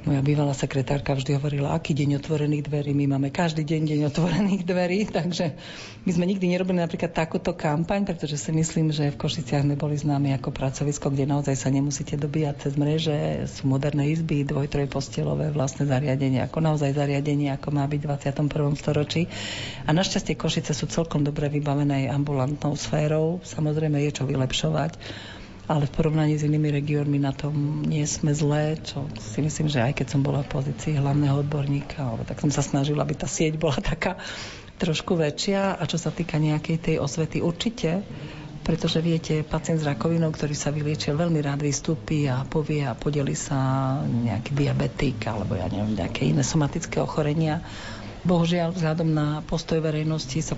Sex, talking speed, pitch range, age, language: female, 165 wpm, 140-160 Hz, 50-69, Slovak